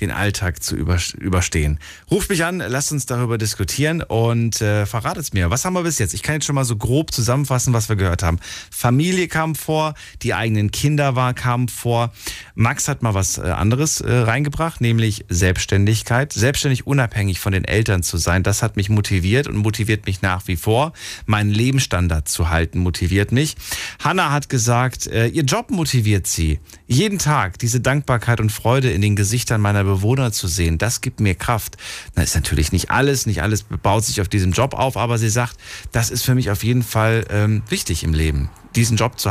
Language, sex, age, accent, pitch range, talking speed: German, male, 40-59, German, 95-130 Hz, 195 wpm